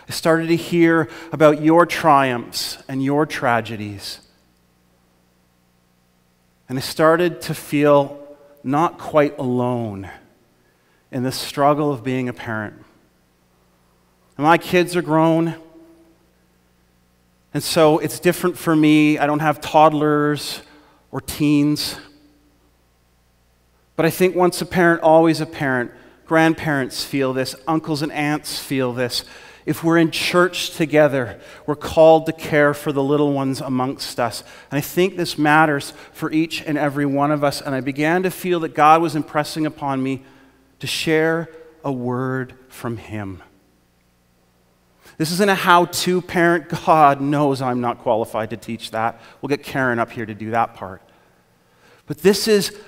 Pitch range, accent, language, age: 115-160 Hz, American, English, 40-59